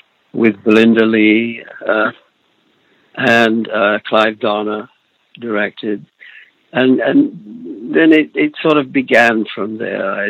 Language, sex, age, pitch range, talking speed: English, male, 60-79, 105-125 Hz, 115 wpm